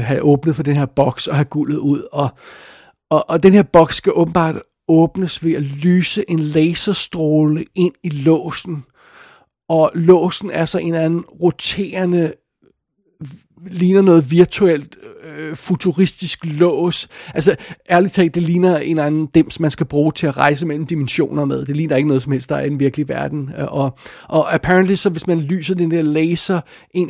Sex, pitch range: male, 150-185 Hz